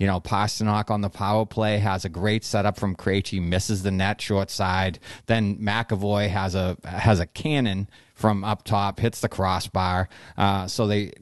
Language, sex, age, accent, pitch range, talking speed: English, male, 30-49, American, 100-120 Hz, 180 wpm